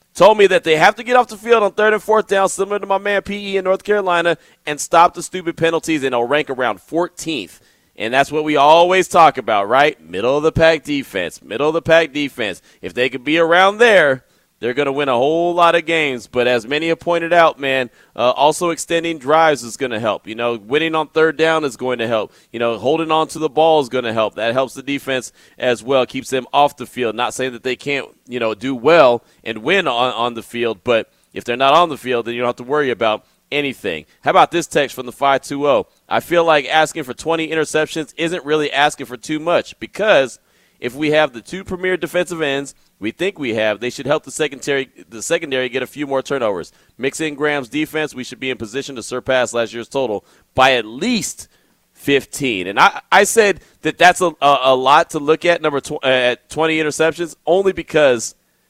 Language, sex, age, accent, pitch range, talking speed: English, male, 30-49, American, 130-165 Hz, 230 wpm